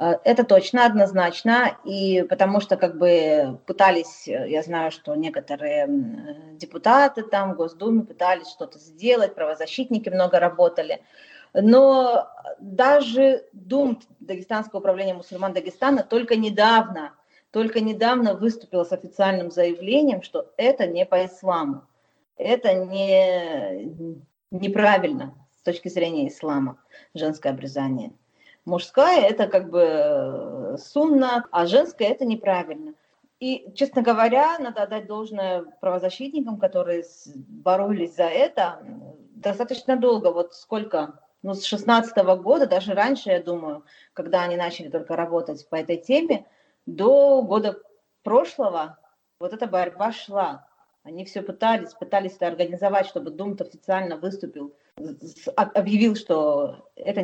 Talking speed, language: 120 wpm, Russian